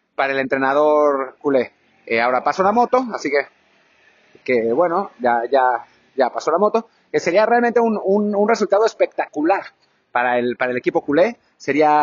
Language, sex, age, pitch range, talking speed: Spanish, male, 30-49, 140-200 Hz, 175 wpm